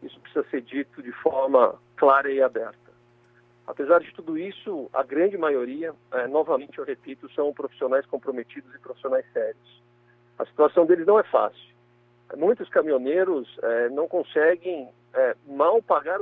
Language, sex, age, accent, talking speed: Portuguese, male, 50-69, Brazilian, 150 wpm